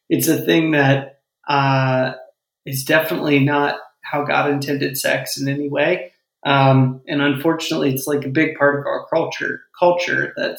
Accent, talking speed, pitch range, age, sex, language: American, 160 wpm, 135-150 Hz, 30-49, male, English